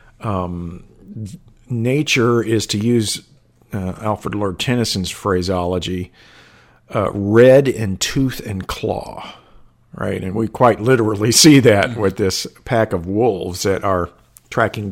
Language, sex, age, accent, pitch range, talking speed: English, male, 50-69, American, 95-110 Hz, 125 wpm